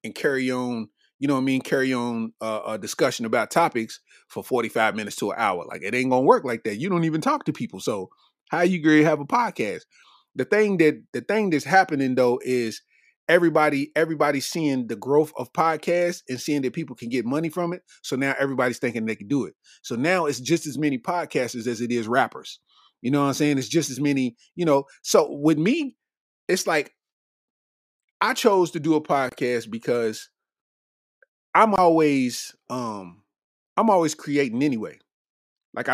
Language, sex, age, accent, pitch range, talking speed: English, male, 30-49, American, 125-160 Hz, 195 wpm